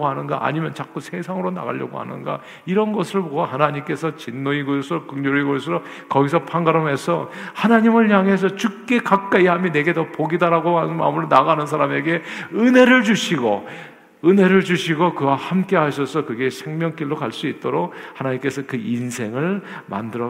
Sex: male